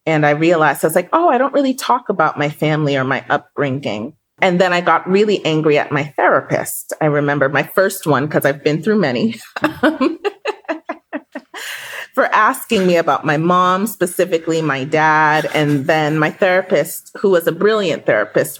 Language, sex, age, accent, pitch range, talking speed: English, female, 30-49, American, 145-200 Hz, 175 wpm